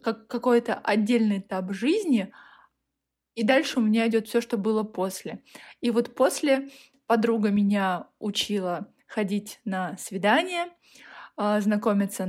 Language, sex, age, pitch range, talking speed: Russian, female, 20-39, 205-245 Hz, 115 wpm